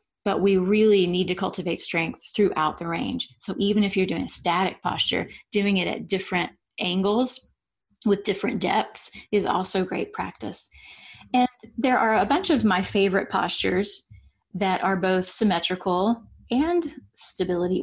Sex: female